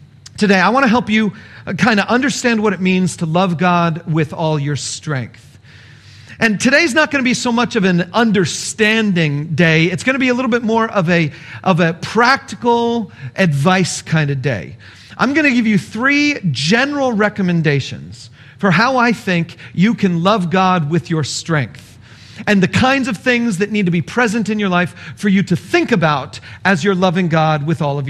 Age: 40-59